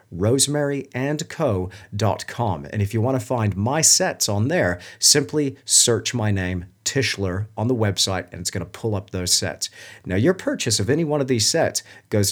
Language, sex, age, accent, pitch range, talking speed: English, male, 40-59, American, 100-135 Hz, 180 wpm